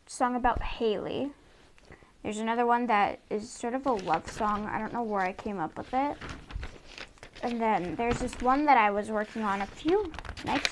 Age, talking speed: 10-29, 195 wpm